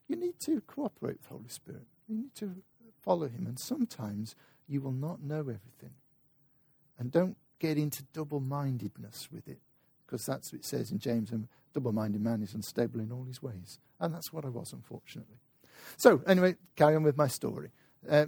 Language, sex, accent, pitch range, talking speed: English, male, British, 140-210 Hz, 185 wpm